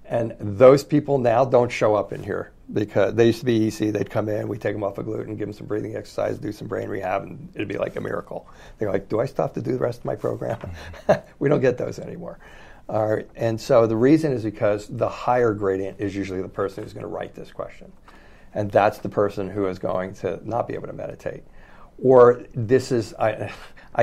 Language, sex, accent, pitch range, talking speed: English, male, American, 100-115 Hz, 235 wpm